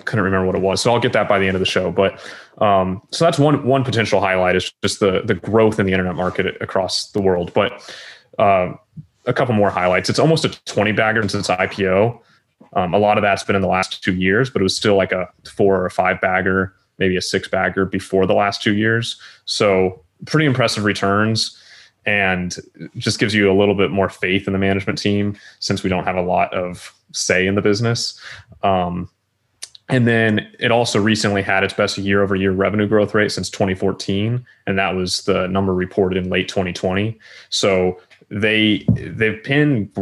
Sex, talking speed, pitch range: male, 200 wpm, 95-110 Hz